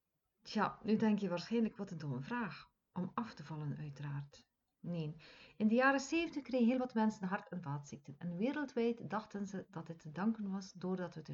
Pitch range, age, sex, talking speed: 160-225 Hz, 50-69, female, 200 wpm